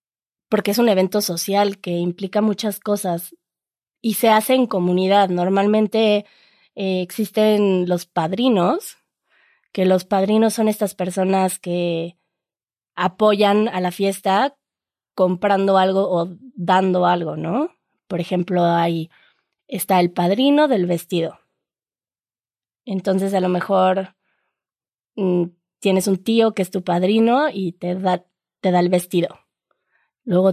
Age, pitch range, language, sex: 20-39, 185-225 Hz, Spanish, female